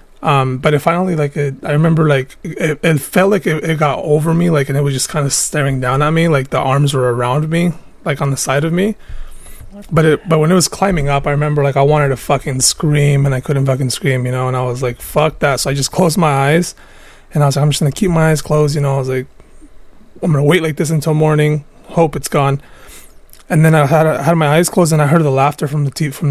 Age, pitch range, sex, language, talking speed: 20-39, 135-165 Hz, male, English, 275 wpm